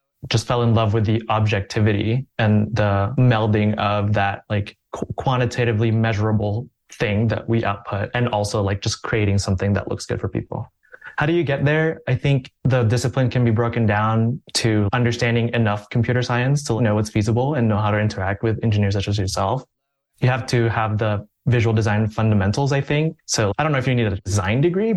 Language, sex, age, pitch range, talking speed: English, male, 20-39, 105-125 Hz, 195 wpm